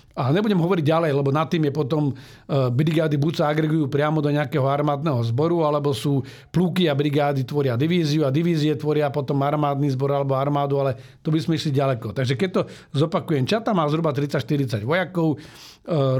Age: 50-69